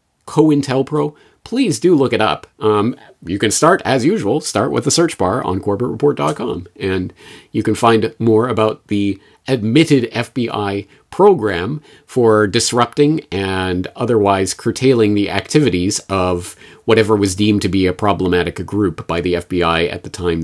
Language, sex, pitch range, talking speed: English, male, 95-130 Hz, 155 wpm